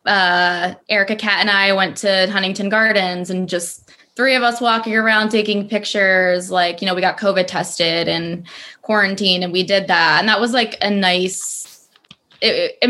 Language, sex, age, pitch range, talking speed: English, female, 20-39, 185-210 Hz, 180 wpm